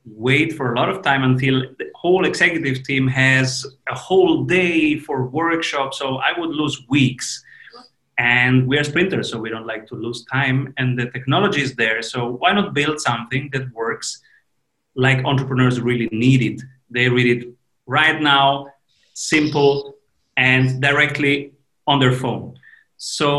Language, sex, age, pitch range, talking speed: English, male, 30-49, 125-150 Hz, 160 wpm